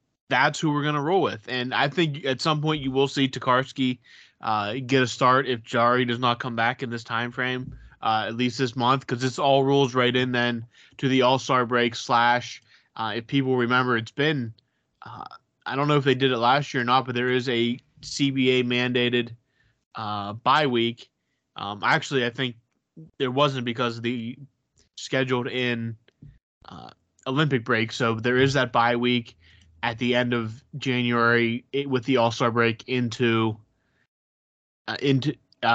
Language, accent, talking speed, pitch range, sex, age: English, American, 180 wpm, 115-135 Hz, male, 20-39